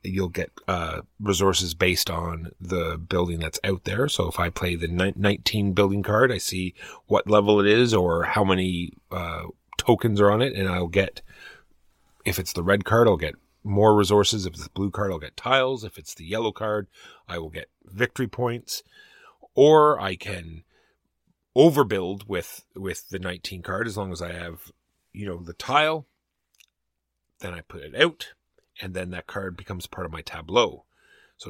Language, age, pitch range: English, 30-49, 85-105 Hz